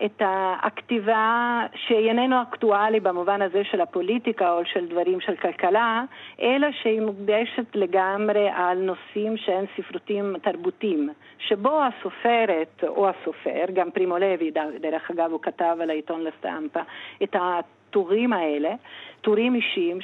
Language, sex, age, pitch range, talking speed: Hebrew, female, 50-69, 180-235 Hz, 125 wpm